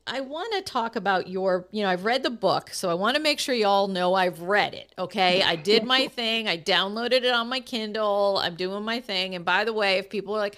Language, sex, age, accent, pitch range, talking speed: English, female, 40-59, American, 180-235 Hz, 260 wpm